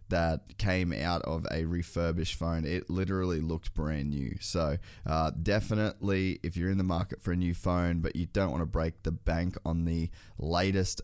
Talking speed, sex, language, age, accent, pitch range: 190 wpm, male, English, 20-39, Australian, 85-95 Hz